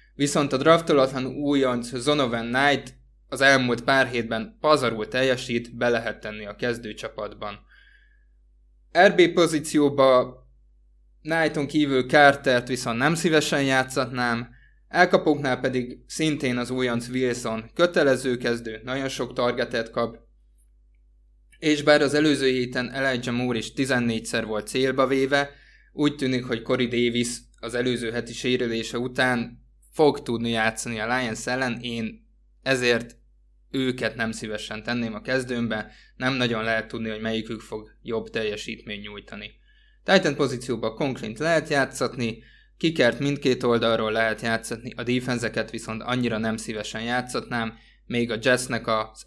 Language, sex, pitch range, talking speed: Hungarian, male, 115-135 Hz, 130 wpm